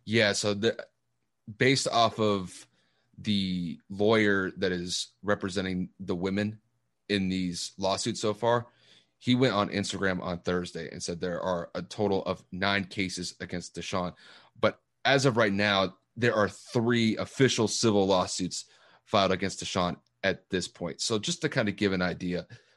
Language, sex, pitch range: English, male, 90-120 Hz